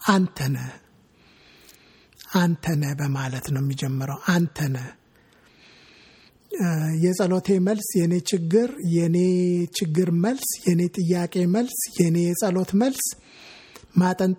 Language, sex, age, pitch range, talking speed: English, male, 60-79, 155-185 Hz, 70 wpm